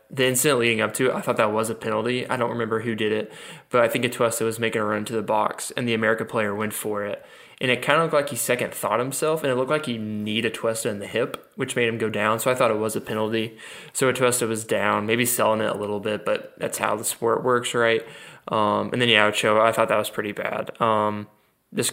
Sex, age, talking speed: male, 10-29, 265 wpm